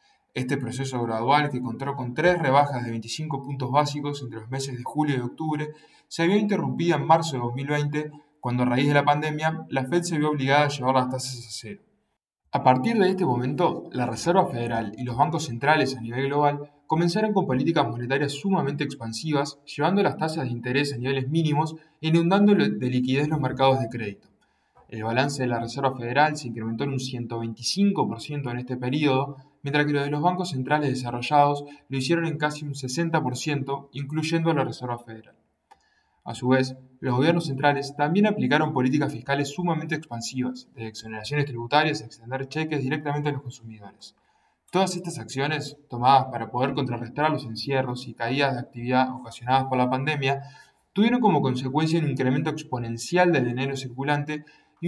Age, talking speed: 20-39, 175 wpm